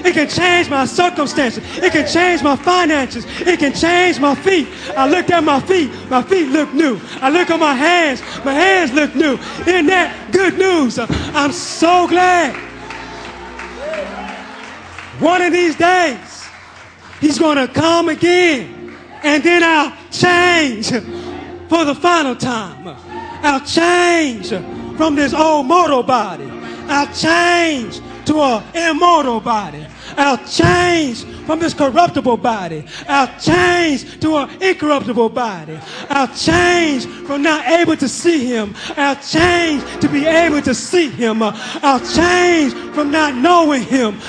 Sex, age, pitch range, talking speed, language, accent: male, 30-49, 275-345 Hz, 140 wpm, English, American